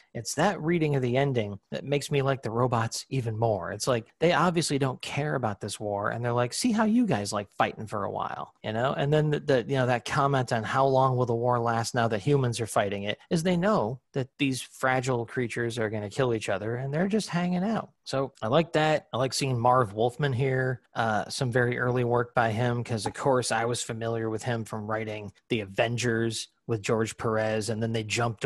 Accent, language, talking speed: American, English, 235 wpm